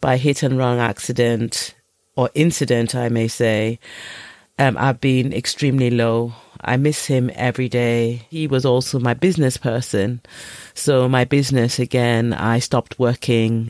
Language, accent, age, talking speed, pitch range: English, British, 30-49, 145 wpm, 125-165 Hz